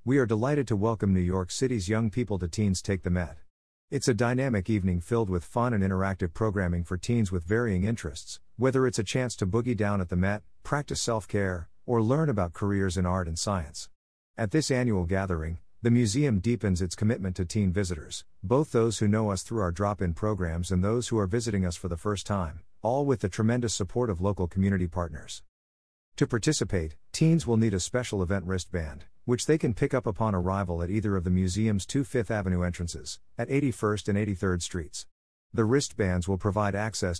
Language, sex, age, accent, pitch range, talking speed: English, male, 50-69, American, 90-115 Hz, 200 wpm